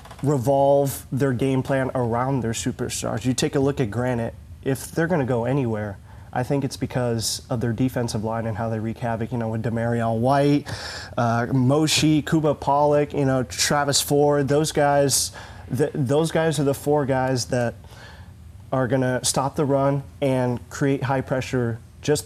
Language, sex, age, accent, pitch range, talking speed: English, male, 30-49, American, 115-135 Hz, 175 wpm